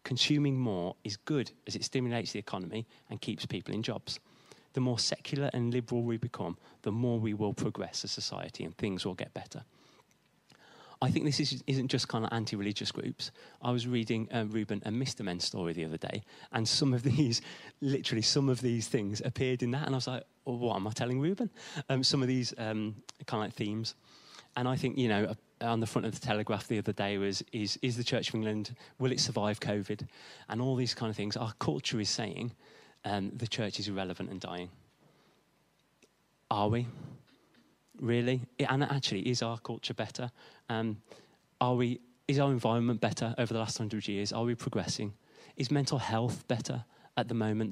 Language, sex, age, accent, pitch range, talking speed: English, male, 30-49, British, 110-130 Hz, 200 wpm